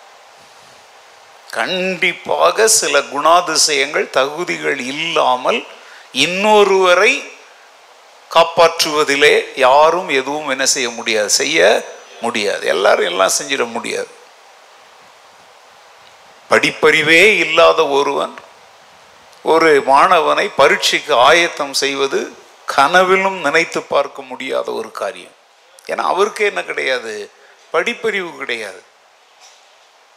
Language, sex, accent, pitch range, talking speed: Tamil, male, native, 170-255 Hz, 75 wpm